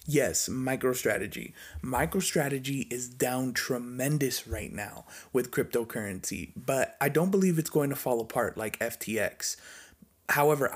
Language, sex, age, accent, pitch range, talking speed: English, male, 30-49, American, 120-150 Hz, 125 wpm